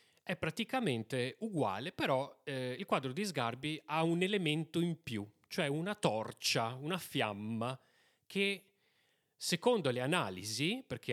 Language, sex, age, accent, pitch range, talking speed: Italian, male, 30-49, native, 120-185 Hz, 130 wpm